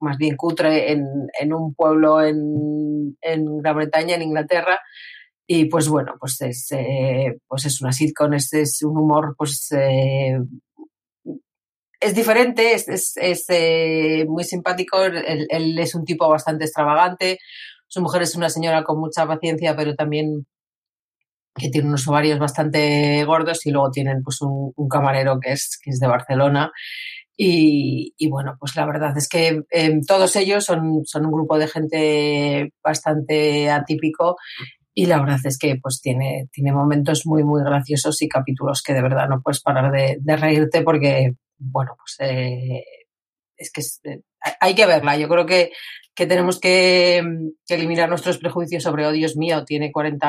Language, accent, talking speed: Spanish, Spanish, 170 wpm